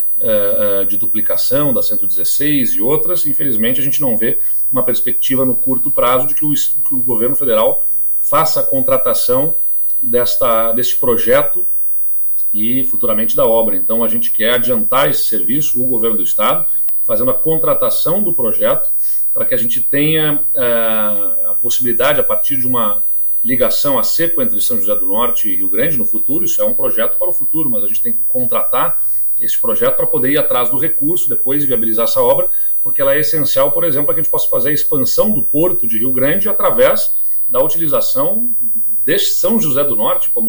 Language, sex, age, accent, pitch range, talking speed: Portuguese, male, 40-59, Brazilian, 115-170 Hz, 185 wpm